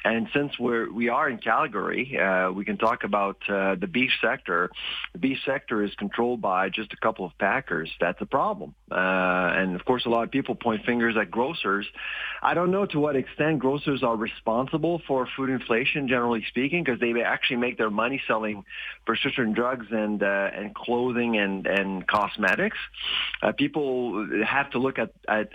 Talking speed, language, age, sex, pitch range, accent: 185 wpm, English, 40-59, male, 110-130 Hz, American